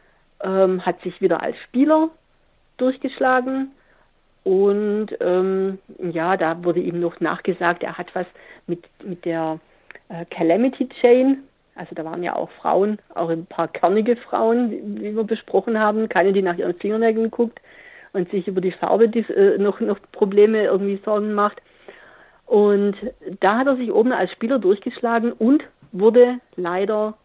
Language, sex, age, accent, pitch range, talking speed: German, female, 50-69, German, 185-245 Hz, 155 wpm